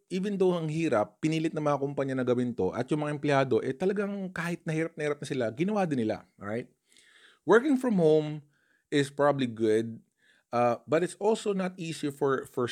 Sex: male